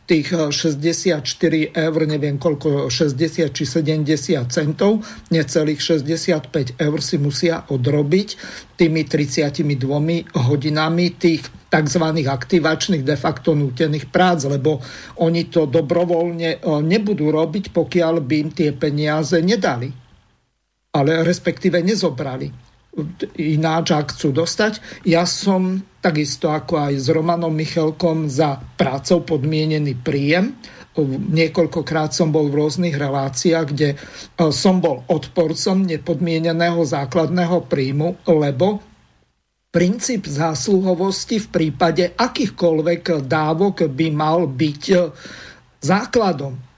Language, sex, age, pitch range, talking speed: Slovak, male, 50-69, 150-175 Hz, 105 wpm